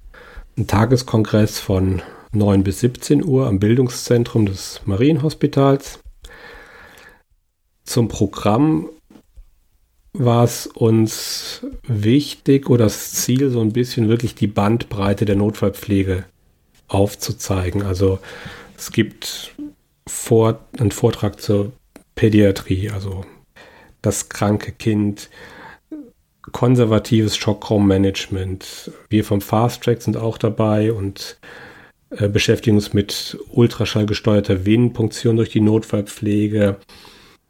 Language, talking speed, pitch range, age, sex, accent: German, 95 wpm, 100-120 Hz, 40-59, male, German